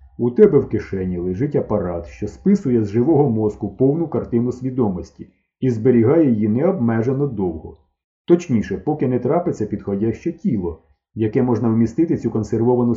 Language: Ukrainian